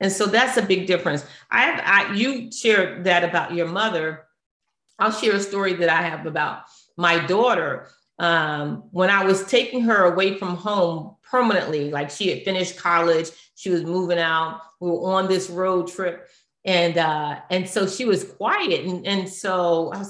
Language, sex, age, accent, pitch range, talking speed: English, female, 40-59, American, 175-240 Hz, 185 wpm